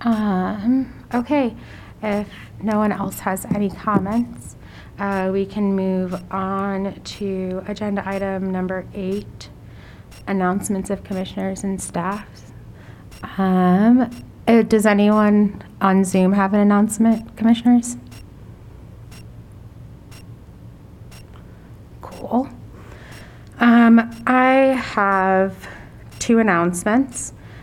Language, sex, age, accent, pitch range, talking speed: English, female, 30-49, American, 185-205 Hz, 85 wpm